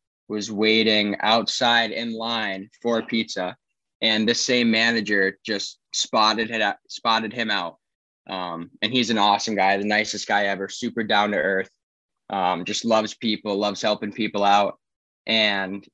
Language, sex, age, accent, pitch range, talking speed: English, male, 10-29, American, 105-120 Hz, 145 wpm